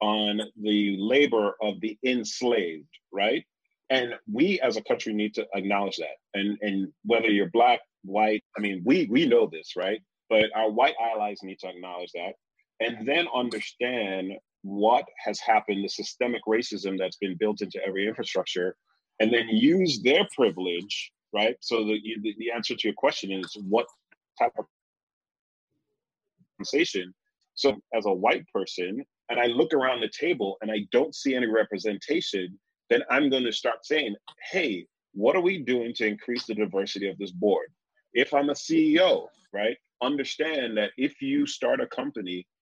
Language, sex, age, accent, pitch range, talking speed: English, male, 30-49, American, 105-135 Hz, 165 wpm